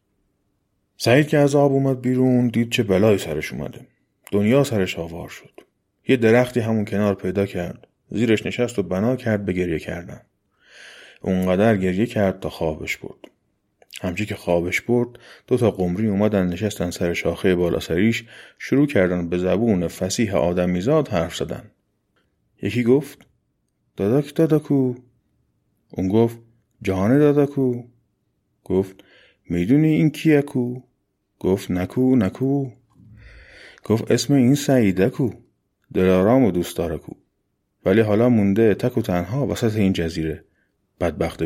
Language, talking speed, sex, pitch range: Persian, 130 wpm, male, 95-125 Hz